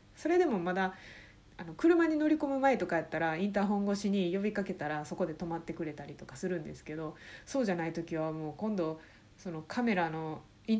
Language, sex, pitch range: Japanese, female, 165-230 Hz